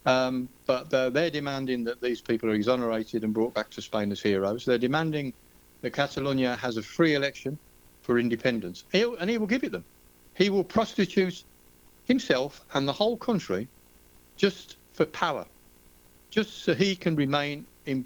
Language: English